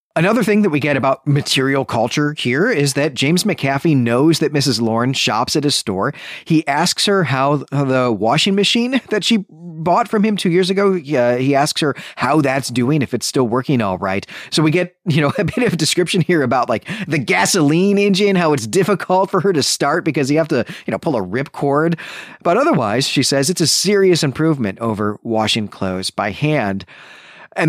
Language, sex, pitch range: English, male, 120-175 Hz